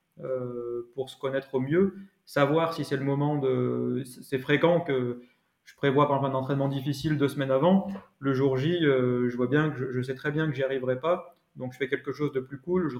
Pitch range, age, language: 130-160 Hz, 20-39, French